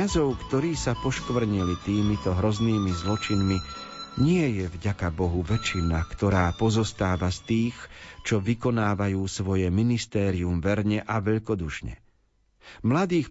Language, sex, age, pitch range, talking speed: Slovak, male, 40-59, 95-120 Hz, 110 wpm